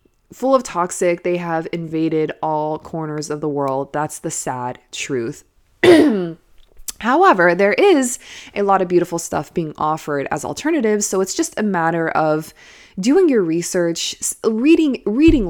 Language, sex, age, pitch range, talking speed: English, female, 20-39, 160-235 Hz, 145 wpm